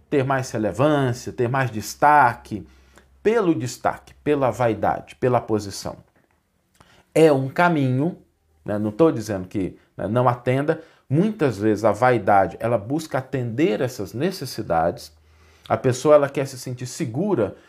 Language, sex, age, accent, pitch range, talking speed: Portuguese, male, 50-69, Brazilian, 115-160 Hz, 130 wpm